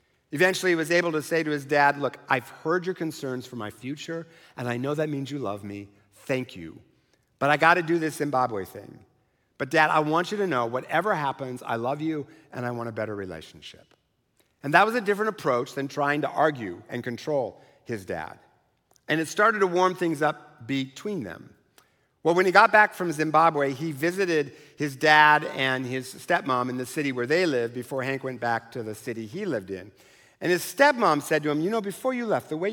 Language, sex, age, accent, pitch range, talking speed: English, male, 50-69, American, 130-175 Hz, 220 wpm